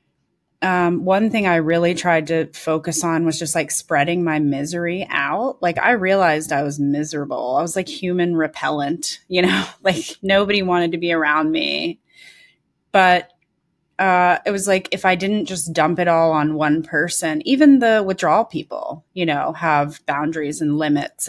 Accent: American